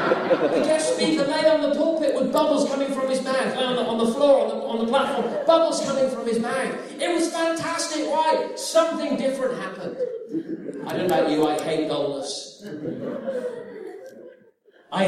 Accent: British